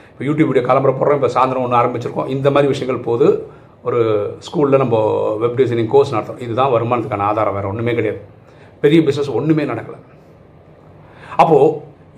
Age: 40-59